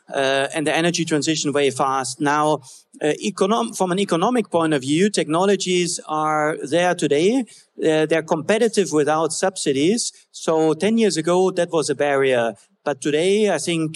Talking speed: 160 wpm